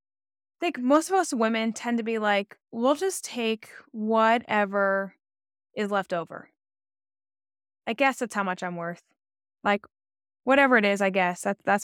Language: English